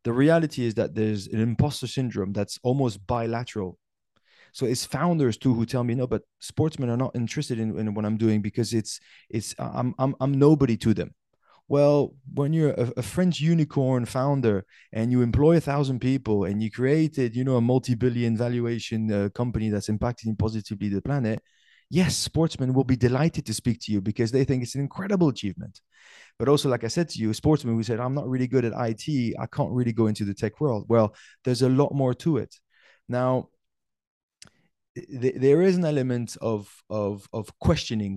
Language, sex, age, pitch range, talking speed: English, male, 20-39, 110-135 Hz, 195 wpm